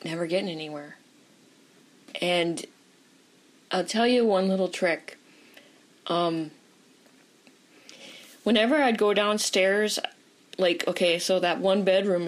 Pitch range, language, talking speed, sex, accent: 170-225 Hz, English, 105 wpm, female, American